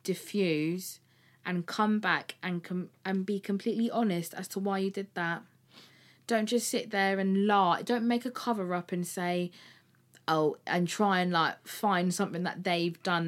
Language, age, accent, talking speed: English, 20-39, British, 175 wpm